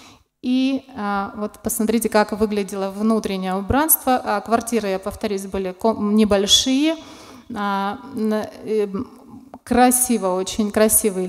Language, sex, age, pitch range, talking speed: Russian, female, 20-39, 200-245 Hz, 80 wpm